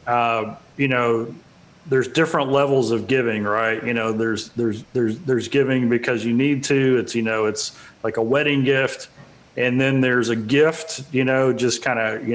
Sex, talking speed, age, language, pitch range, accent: male, 190 wpm, 40-59, English, 120-145 Hz, American